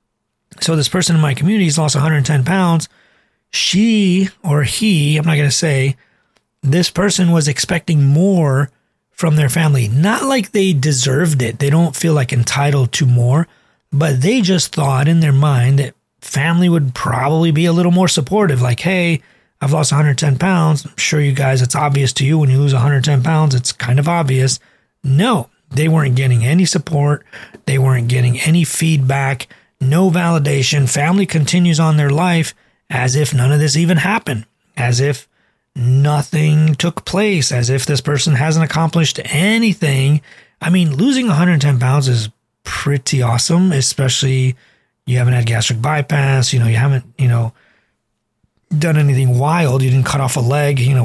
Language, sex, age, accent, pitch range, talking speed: English, male, 30-49, American, 130-165 Hz, 170 wpm